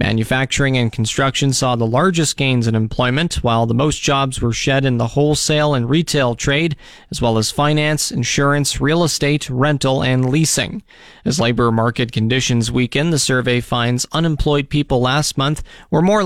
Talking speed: 165 wpm